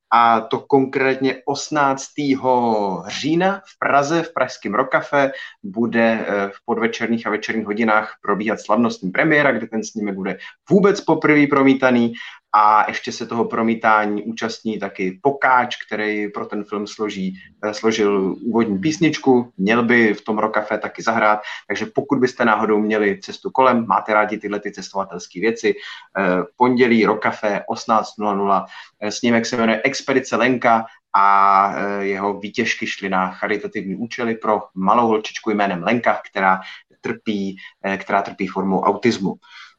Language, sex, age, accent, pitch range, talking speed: Czech, male, 30-49, native, 105-135 Hz, 135 wpm